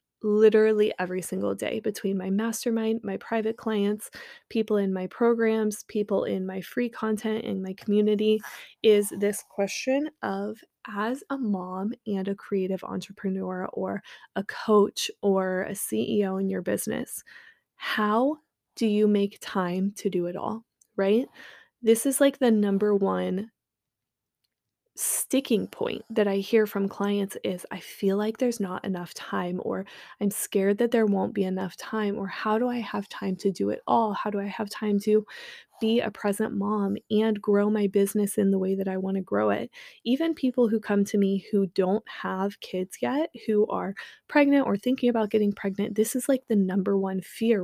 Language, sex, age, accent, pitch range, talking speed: English, female, 20-39, American, 195-225 Hz, 180 wpm